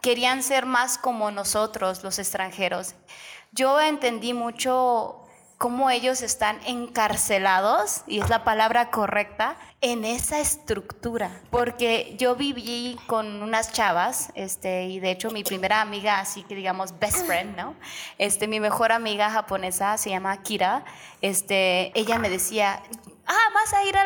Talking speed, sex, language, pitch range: 145 wpm, female, Spanish, 205-270 Hz